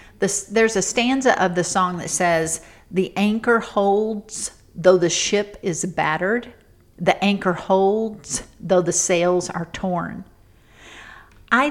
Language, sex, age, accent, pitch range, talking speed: English, female, 50-69, American, 165-205 Hz, 130 wpm